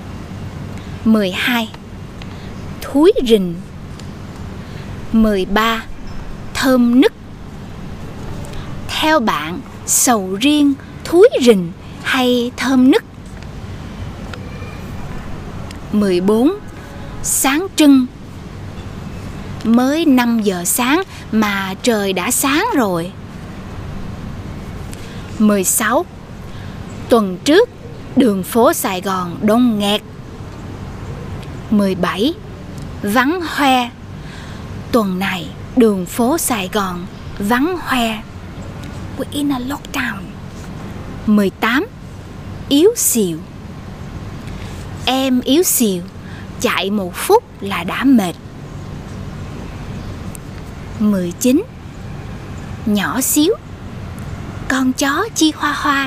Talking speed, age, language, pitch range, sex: 80 wpm, 20-39, Vietnamese, 190-275 Hz, female